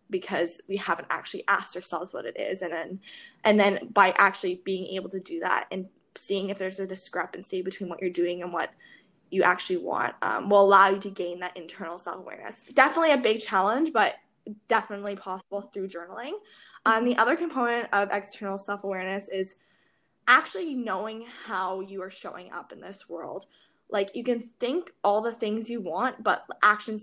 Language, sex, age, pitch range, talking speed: English, female, 10-29, 190-225 Hz, 180 wpm